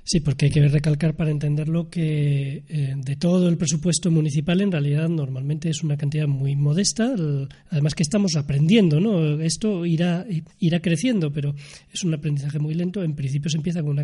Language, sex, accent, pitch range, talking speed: Spanish, male, Spanish, 145-175 Hz, 185 wpm